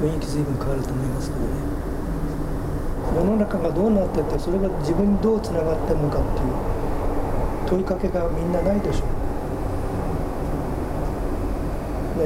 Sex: male